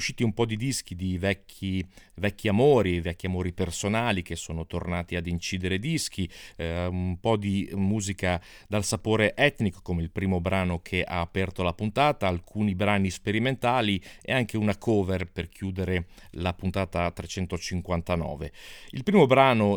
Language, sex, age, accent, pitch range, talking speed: Italian, male, 40-59, native, 90-110 Hz, 150 wpm